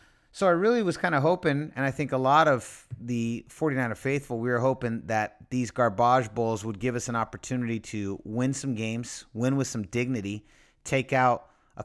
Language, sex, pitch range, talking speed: English, male, 105-130 Hz, 195 wpm